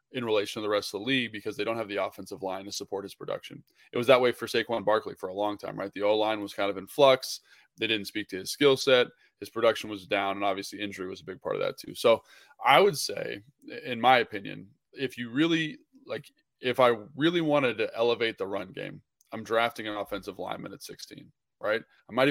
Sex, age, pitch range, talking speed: male, 20-39, 105-130 Hz, 240 wpm